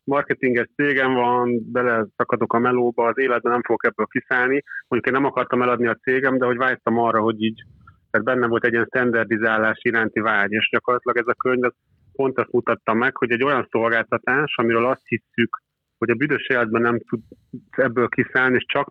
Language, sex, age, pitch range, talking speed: Hungarian, male, 30-49, 115-130 Hz, 190 wpm